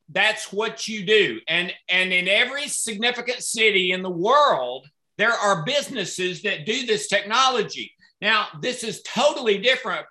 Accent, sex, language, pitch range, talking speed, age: American, male, English, 190-250 Hz, 150 wpm, 50-69